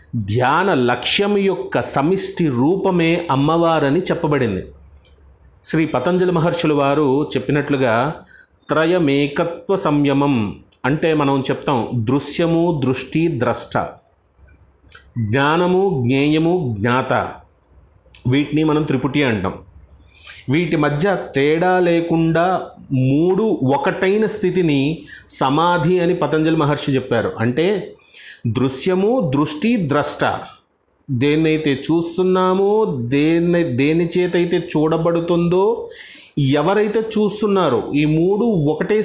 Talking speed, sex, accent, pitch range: 85 wpm, male, native, 135-180 Hz